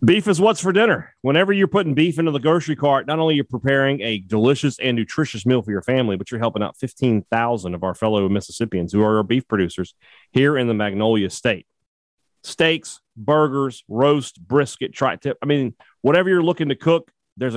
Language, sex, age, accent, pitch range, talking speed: English, male, 40-59, American, 110-145 Hz, 200 wpm